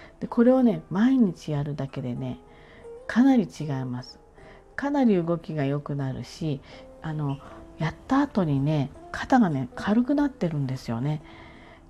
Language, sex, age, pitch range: Japanese, female, 40-59, 150-220 Hz